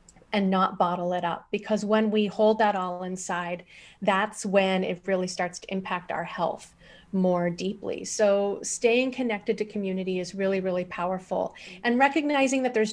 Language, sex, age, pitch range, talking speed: English, female, 30-49, 185-230 Hz, 165 wpm